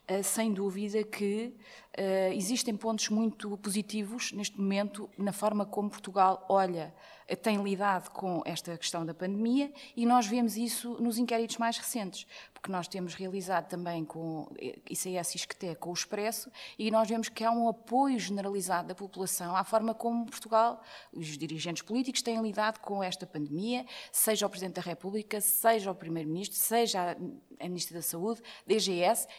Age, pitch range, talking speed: 20-39, 185-235 Hz, 155 wpm